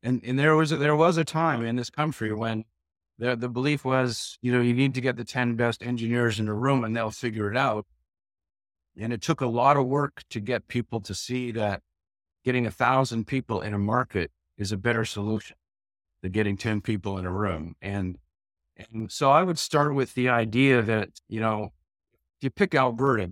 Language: English